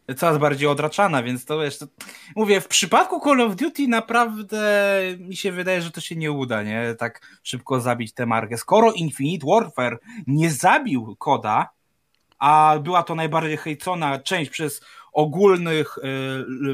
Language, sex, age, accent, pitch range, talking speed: Polish, male, 20-39, native, 140-200 Hz, 155 wpm